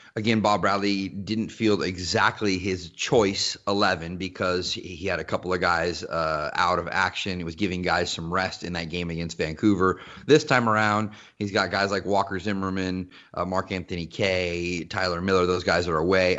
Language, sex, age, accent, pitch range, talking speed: English, male, 30-49, American, 90-110 Hz, 185 wpm